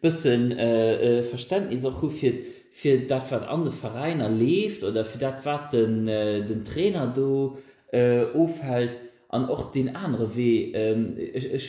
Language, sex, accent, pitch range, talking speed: English, male, German, 115-145 Hz, 155 wpm